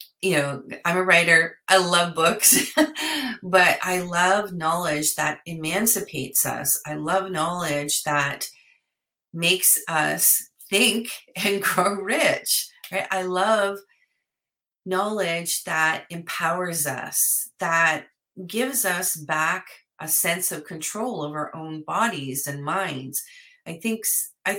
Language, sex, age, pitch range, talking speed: English, female, 30-49, 165-215 Hz, 115 wpm